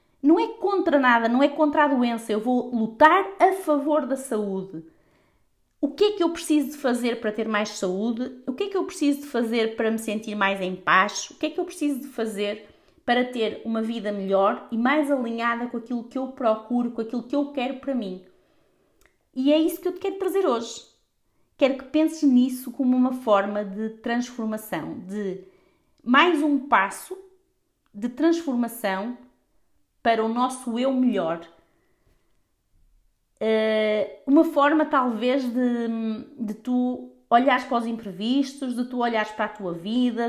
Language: Portuguese